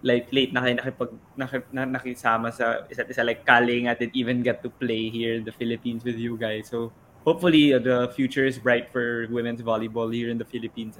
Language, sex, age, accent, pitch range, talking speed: Filipino, male, 20-39, native, 120-130 Hz, 205 wpm